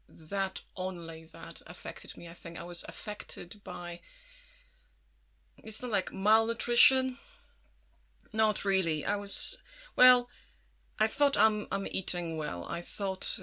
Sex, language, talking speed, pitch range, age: female, English, 125 wpm, 160-195 Hz, 30-49